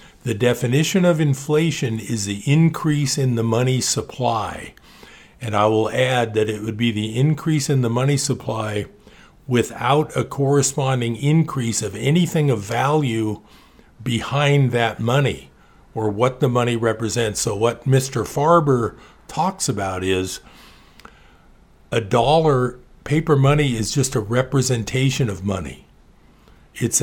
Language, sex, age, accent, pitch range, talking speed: English, male, 50-69, American, 110-140 Hz, 130 wpm